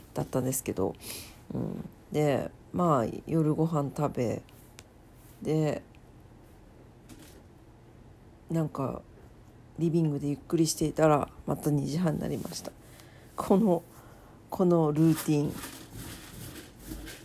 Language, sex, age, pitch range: Japanese, female, 40-59, 140-185 Hz